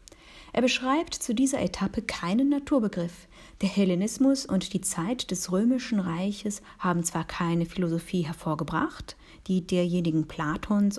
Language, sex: English, female